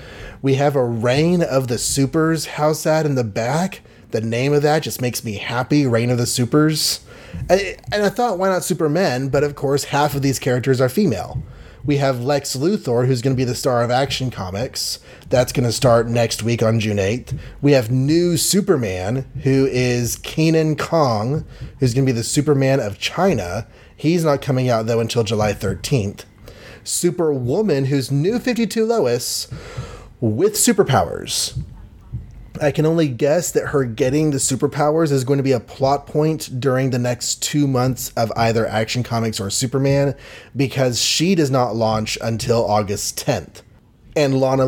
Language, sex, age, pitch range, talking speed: English, male, 30-49, 115-145 Hz, 175 wpm